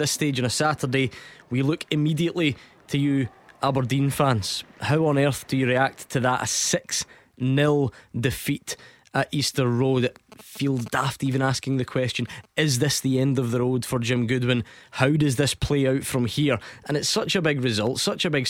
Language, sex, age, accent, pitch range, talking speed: English, male, 20-39, British, 120-145 Hz, 190 wpm